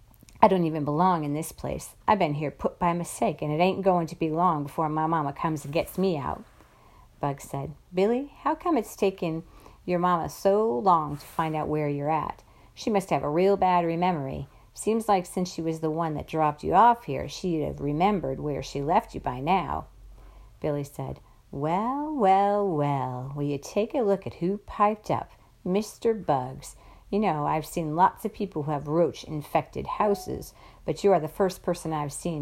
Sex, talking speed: female, 200 wpm